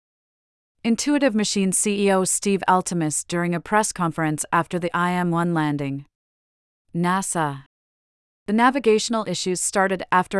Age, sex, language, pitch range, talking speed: 30-49, female, English, 165-200 Hz, 110 wpm